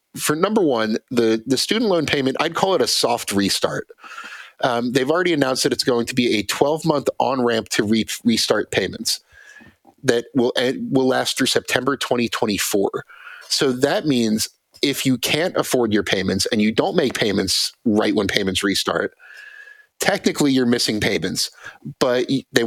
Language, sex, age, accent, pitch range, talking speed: English, male, 30-49, American, 110-145 Hz, 165 wpm